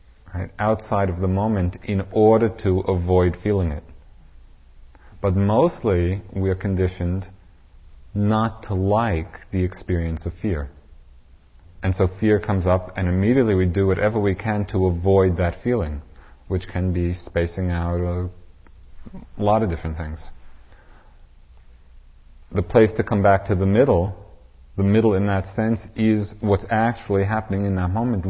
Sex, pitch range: male, 80-105 Hz